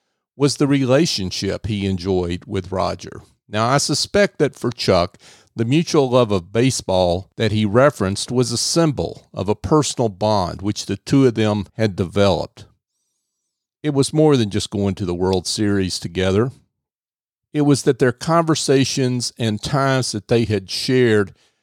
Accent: American